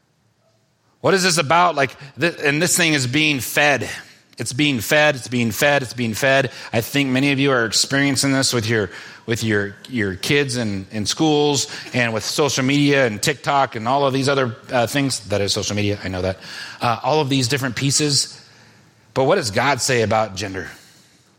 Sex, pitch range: male, 115-145 Hz